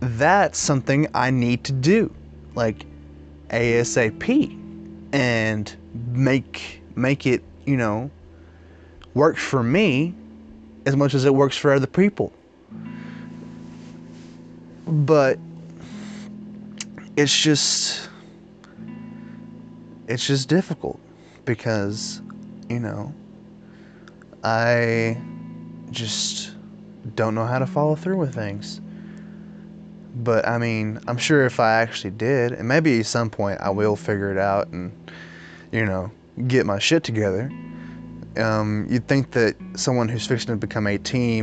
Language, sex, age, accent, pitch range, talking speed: English, male, 20-39, American, 100-140 Hz, 115 wpm